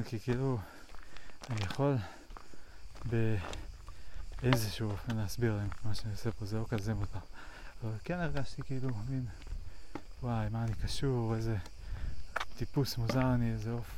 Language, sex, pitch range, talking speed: Hebrew, male, 105-120 Hz, 135 wpm